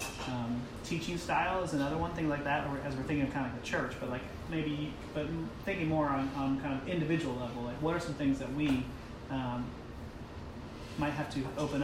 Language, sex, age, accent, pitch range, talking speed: English, male, 30-49, American, 125-140 Hz, 215 wpm